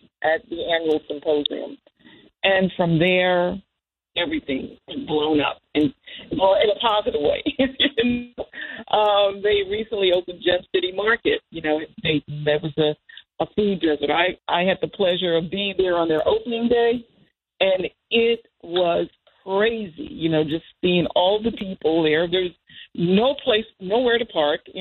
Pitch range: 160-205 Hz